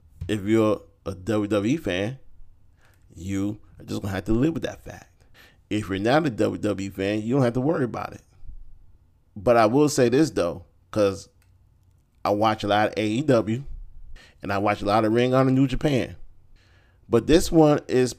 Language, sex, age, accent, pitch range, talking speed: English, male, 30-49, American, 95-115 Hz, 190 wpm